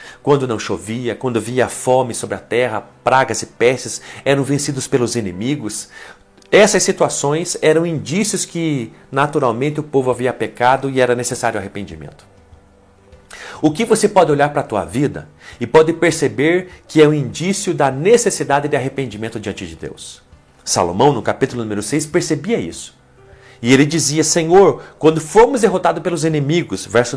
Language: Portuguese